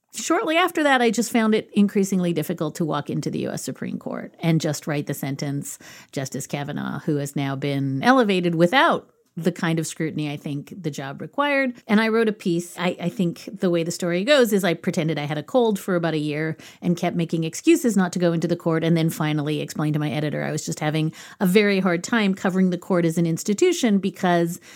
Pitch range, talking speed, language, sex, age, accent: 155-195 Hz, 230 wpm, English, female, 40-59, American